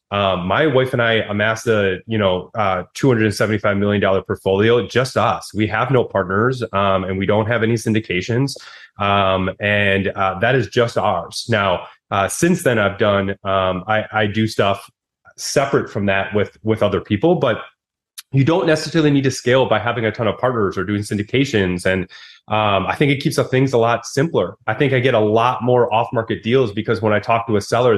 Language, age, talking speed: English, 30-49, 210 wpm